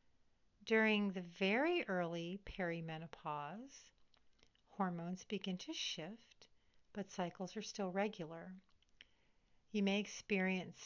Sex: female